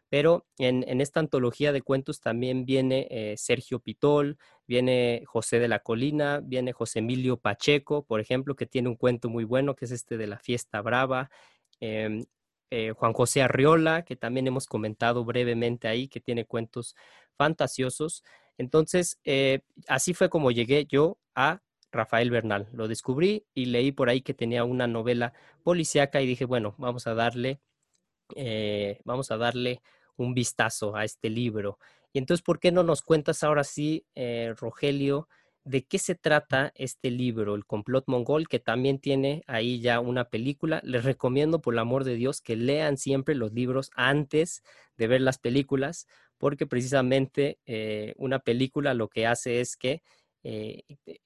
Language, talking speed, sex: Spanish, 165 wpm, male